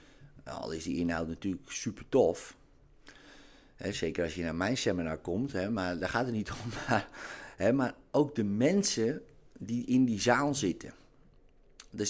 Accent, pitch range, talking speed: Dutch, 90-125 Hz, 155 wpm